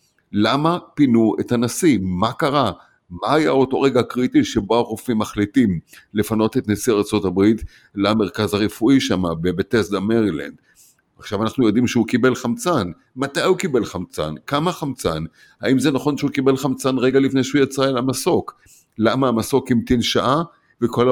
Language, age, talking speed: Hebrew, 50-69, 150 wpm